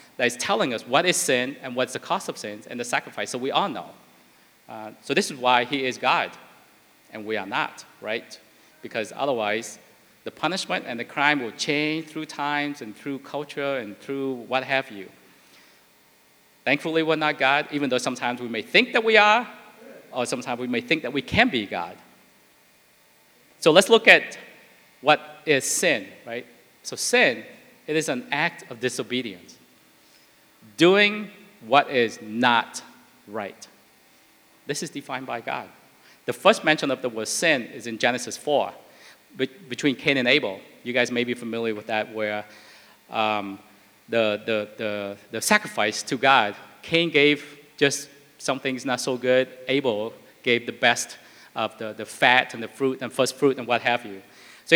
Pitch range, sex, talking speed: 110-145 Hz, male, 175 wpm